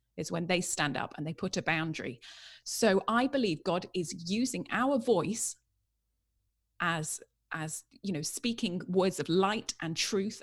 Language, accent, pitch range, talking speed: English, British, 155-200 Hz, 160 wpm